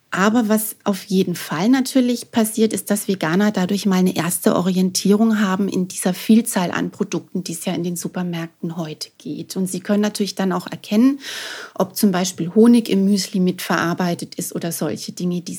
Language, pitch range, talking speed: German, 190-240 Hz, 185 wpm